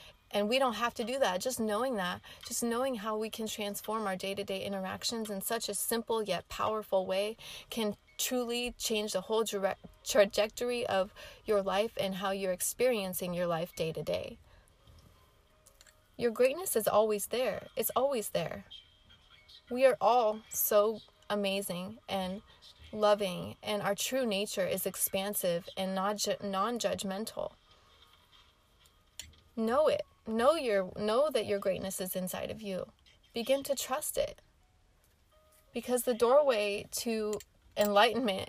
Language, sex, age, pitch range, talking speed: English, female, 30-49, 195-230 Hz, 135 wpm